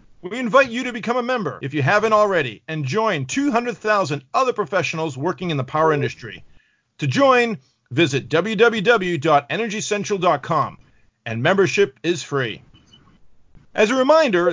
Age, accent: 40-59, American